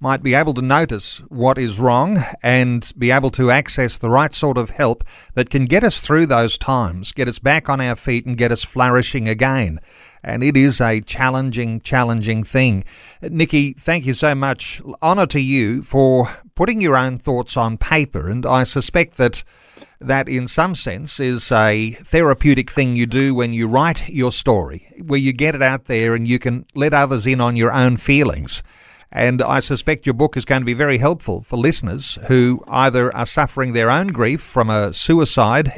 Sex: male